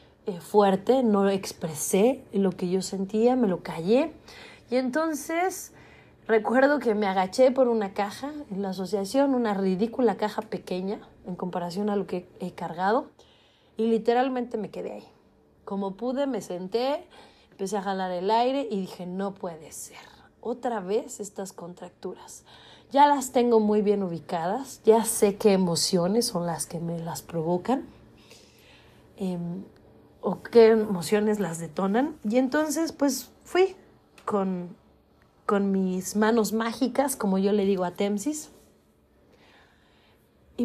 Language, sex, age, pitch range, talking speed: Spanish, female, 30-49, 185-240 Hz, 140 wpm